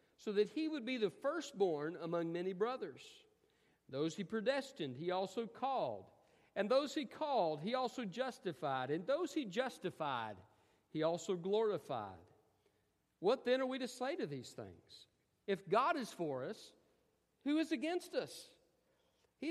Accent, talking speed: American, 150 wpm